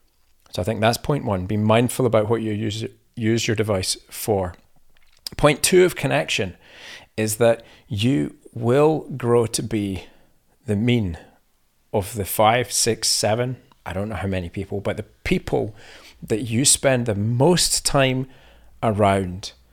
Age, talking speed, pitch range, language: 40-59, 150 wpm, 100-125 Hz, English